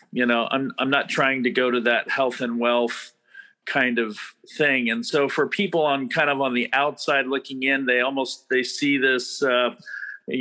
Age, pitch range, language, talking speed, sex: 40-59, 120-145 Hz, English, 195 wpm, male